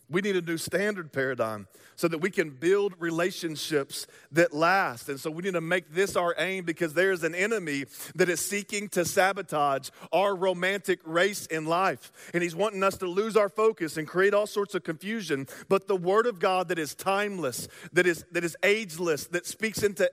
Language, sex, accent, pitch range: English, male, American, 165-200 Hz